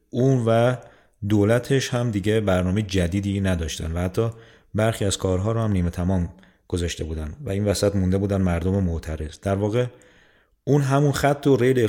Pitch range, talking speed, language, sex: 90-110 Hz, 165 wpm, Persian, male